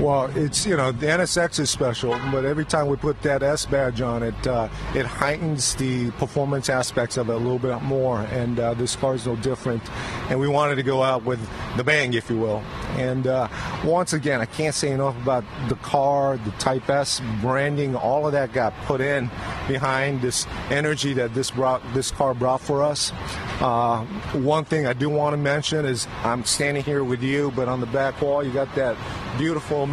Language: English